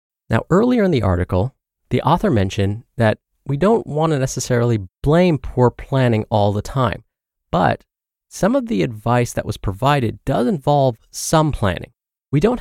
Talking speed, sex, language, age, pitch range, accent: 160 wpm, male, English, 30-49, 110-145 Hz, American